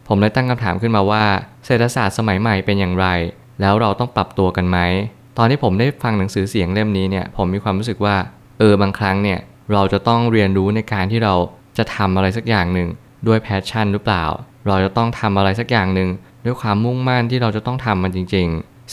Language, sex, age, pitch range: Thai, male, 20-39, 95-120 Hz